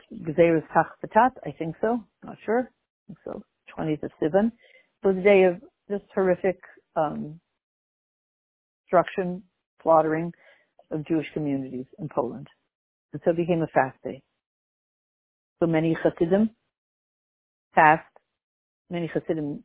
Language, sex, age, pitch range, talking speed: English, female, 60-79, 155-195 Hz, 115 wpm